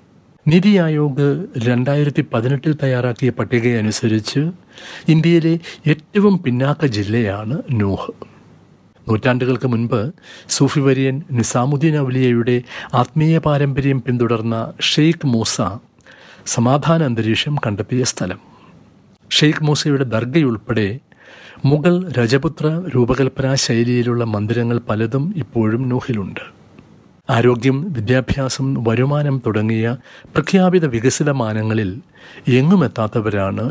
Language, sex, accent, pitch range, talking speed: Malayalam, male, native, 115-145 Hz, 70 wpm